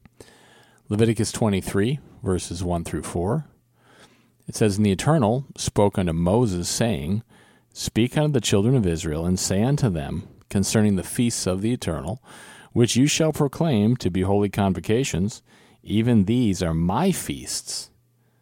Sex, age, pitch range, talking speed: male, 40-59, 90-115 Hz, 145 wpm